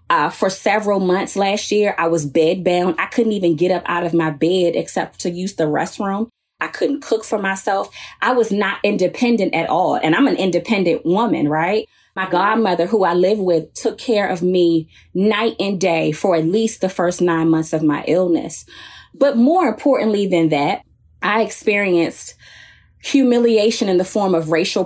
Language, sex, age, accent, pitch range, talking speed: English, female, 20-39, American, 175-215 Hz, 185 wpm